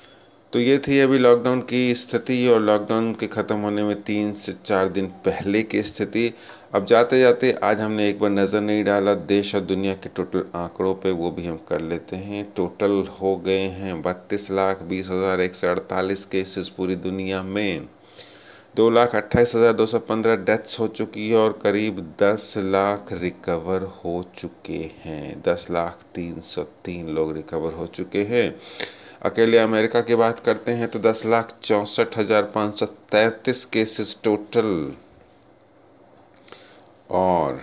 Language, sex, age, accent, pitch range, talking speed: Hindi, male, 30-49, native, 95-110 Hz, 150 wpm